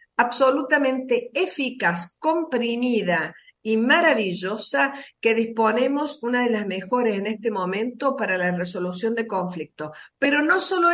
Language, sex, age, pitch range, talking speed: Spanish, female, 50-69, 190-250 Hz, 120 wpm